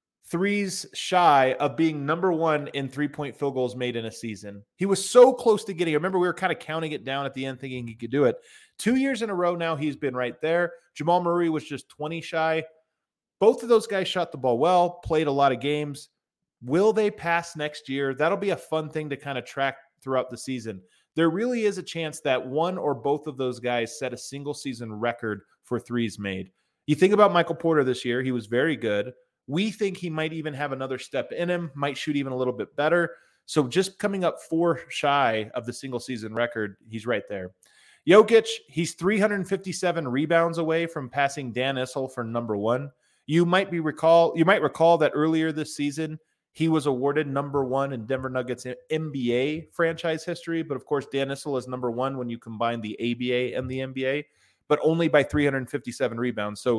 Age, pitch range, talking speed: 30-49, 130-170 Hz, 210 wpm